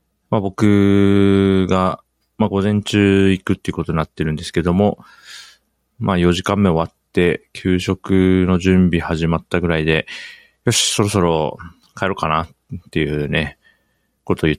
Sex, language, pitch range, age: male, Japanese, 80-105 Hz, 40-59